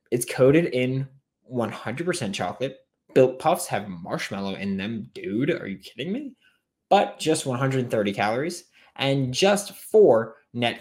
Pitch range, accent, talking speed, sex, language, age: 100-135 Hz, American, 140 wpm, male, English, 20-39